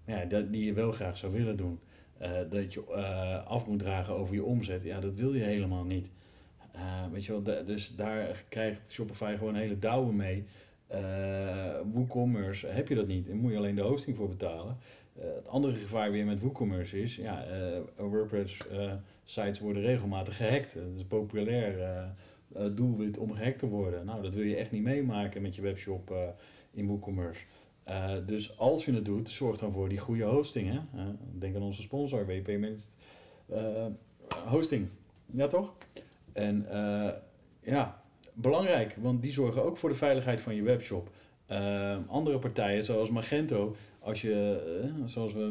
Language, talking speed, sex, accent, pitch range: Dutch, 185 wpm, male, Dutch, 100-115 Hz